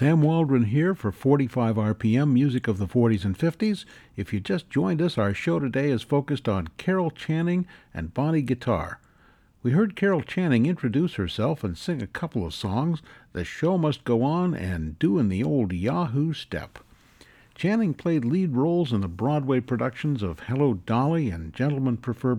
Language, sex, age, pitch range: English, male, 60-79, 110-155 Hz